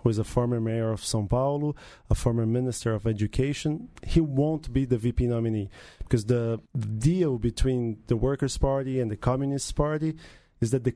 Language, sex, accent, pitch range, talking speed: English, male, Brazilian, 115-145 Hz, 180 wpm